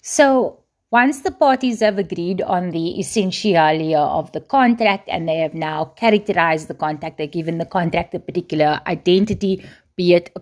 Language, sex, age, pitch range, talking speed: English, female, 30-49, 170-220 Hz, 175 wpm